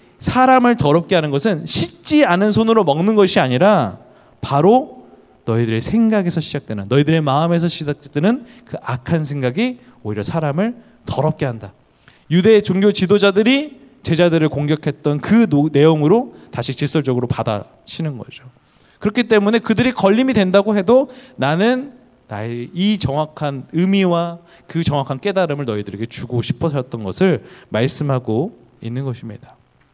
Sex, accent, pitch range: male, native, 120-175 Hz